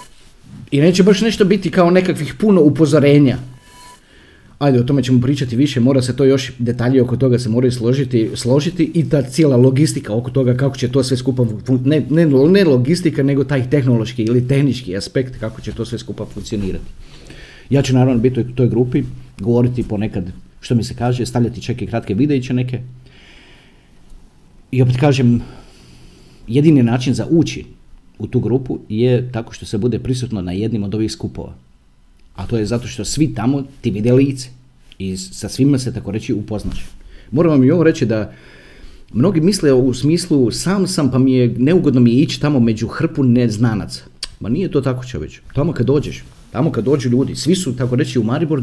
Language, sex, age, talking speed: Croatian, male, 40-59, 185 wpm